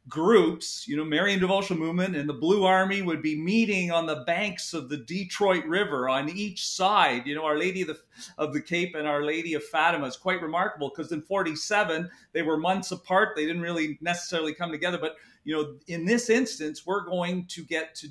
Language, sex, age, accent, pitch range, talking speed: English, male, 40-59, American, 160-200 Hz, 210 wpm